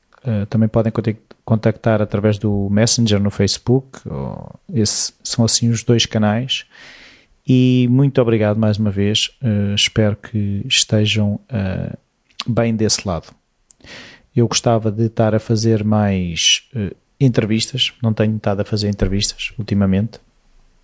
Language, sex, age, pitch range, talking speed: Portuguese, male, 30-49, 105-115 Hz, 115 wpm